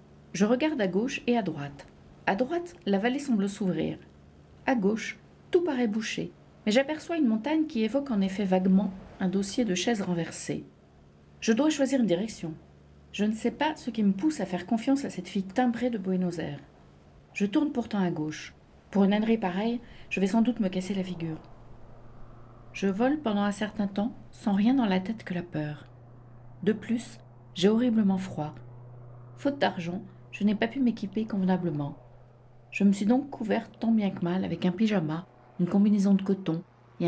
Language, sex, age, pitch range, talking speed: French, female, 50-69, 160-230 Hz, 190 wpm